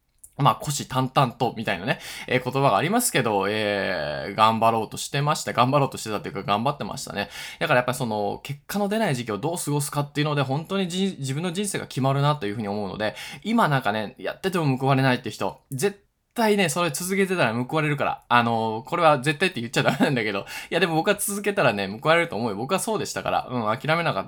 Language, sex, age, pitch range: Japanese, male, 20-39, 110-165 Hz